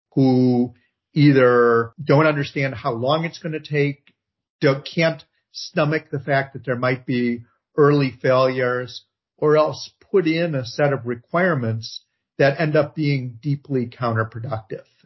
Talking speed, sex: 135 wpm, male